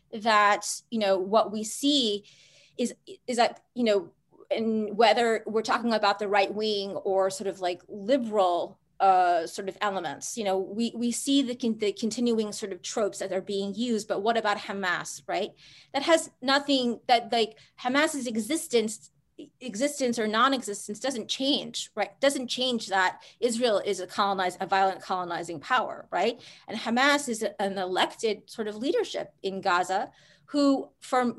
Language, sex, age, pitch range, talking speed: English, female, 30-49, 195-245 Hz, 160 wpm